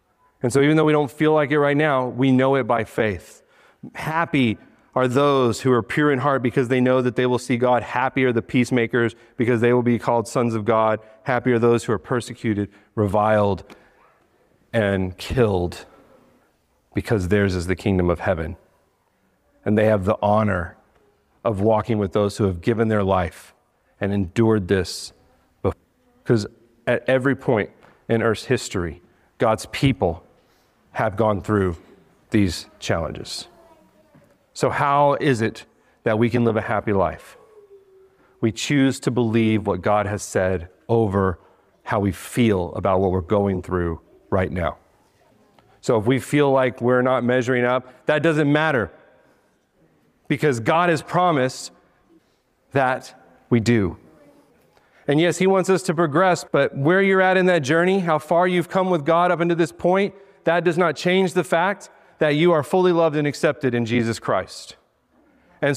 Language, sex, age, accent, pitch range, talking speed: English, male, 40-59, American, 105-150 Hz, 165 wpm